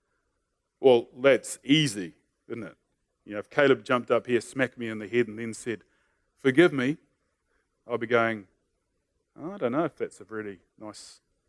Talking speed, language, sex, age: 180 wpm, English, male, 30-49